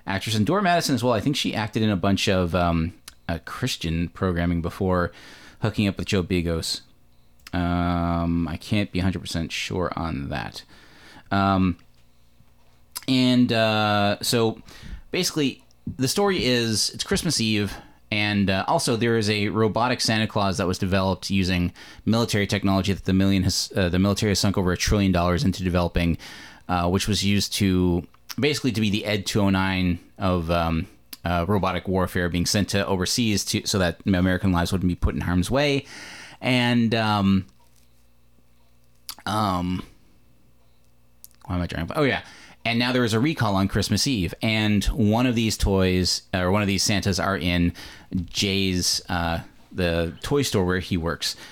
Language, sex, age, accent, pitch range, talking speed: English, male, 20-39, American, 85-110 Hz, 165 wpm